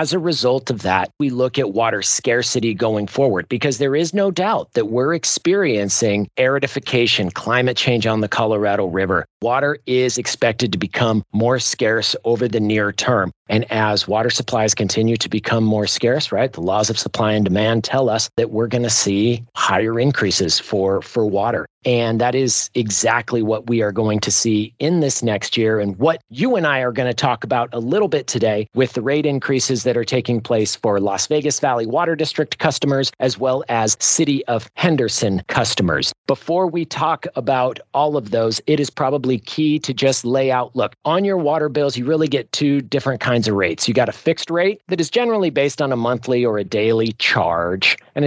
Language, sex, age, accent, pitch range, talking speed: English, male, 40-59, American, 110-145 Hz, 200 wpm